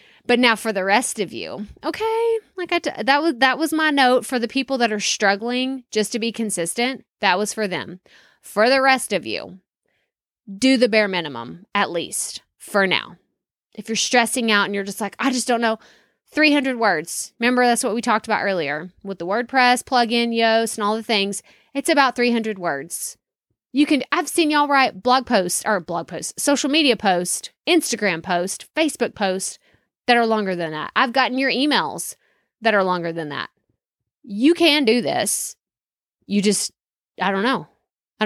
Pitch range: 205-265 Hz